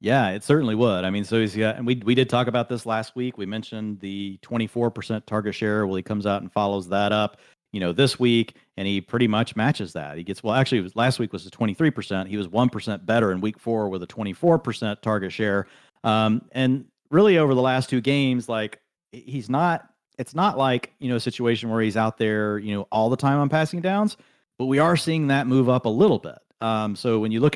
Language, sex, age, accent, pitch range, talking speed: English, male, 40-59, American, 105-130 Hz, 240 wpm